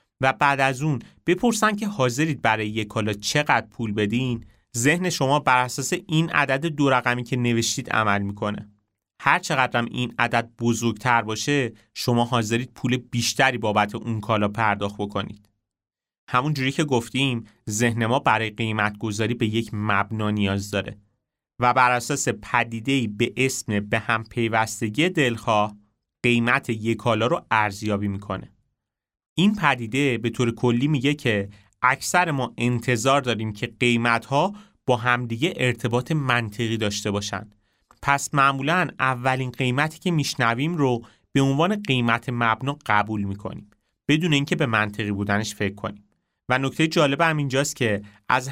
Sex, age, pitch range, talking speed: male, 30-49, 110-135 Hz, 135 wpm